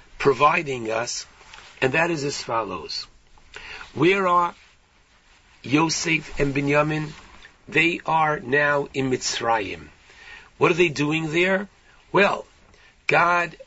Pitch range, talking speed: 140-170 Hz, 105 wpm